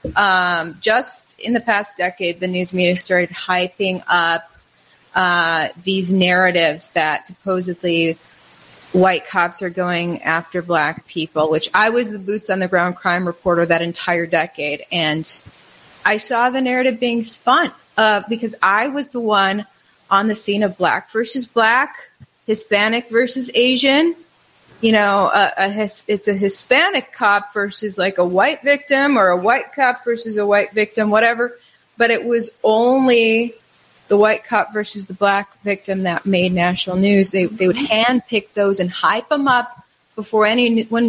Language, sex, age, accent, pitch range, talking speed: English, female, 30-49, American, 185-230 Hz, 160 wpm